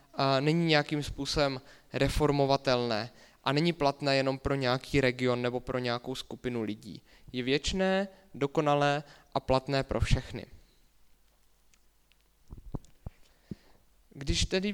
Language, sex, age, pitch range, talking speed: English, male, 20-39, 130-155 Hz, 105 wpm